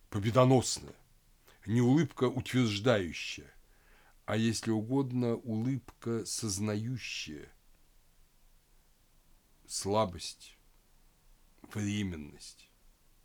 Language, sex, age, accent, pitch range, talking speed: Russian, male, 60-79, native, 95-120 Hz, 50 wpm